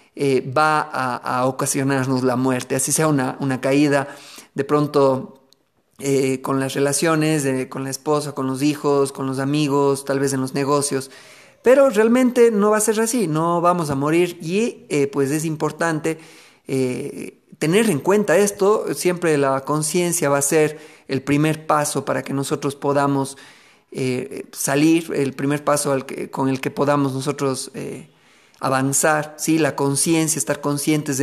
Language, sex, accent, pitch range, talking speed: Spanish, male, Mexican, 135-160 Hz, 165 wpm